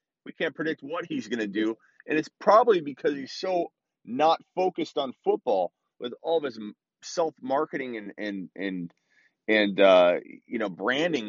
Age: 30-49